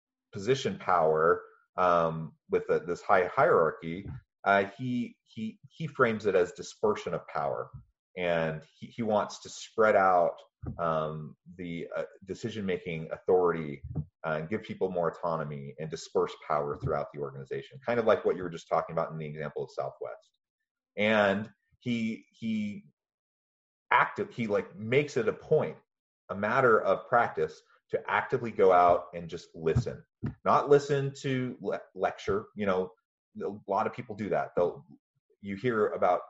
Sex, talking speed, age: male, 150 wpm, 30-49